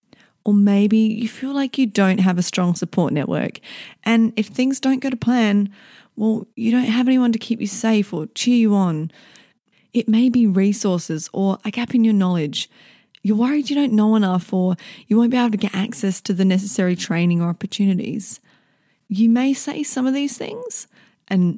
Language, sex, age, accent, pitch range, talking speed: English, female, 30-49, Australian, 185-240 Hz, 195 wpm